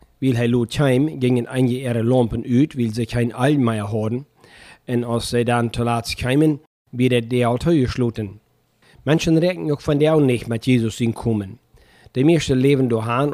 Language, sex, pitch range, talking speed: German, male, 115-140 Hz, 180 wpm